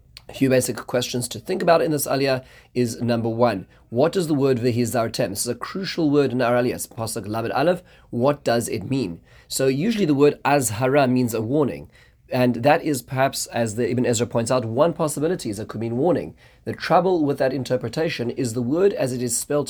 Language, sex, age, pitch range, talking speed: English, male, 30-49, 115-135 Hz, 215 wpm